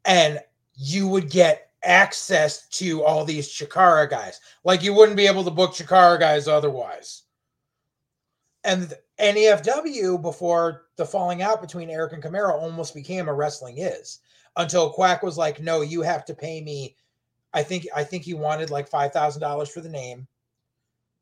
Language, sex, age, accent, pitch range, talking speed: English, male, 30-49, American, 145-180 Hz, 155 wpm